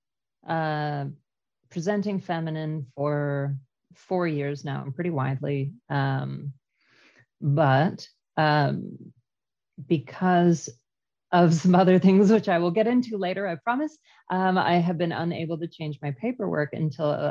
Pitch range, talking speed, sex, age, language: 140-165 Hz, 125 wpm, female, 40-59, English